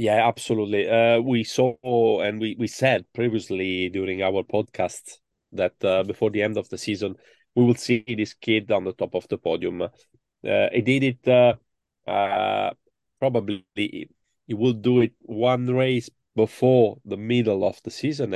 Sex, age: male, 30-49